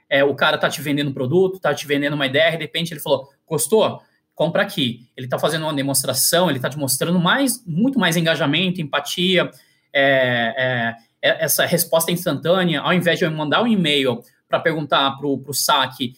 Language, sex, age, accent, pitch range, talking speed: Portuguese, male, 20-39, Brazilian, 145-190 Hz, 180 wpm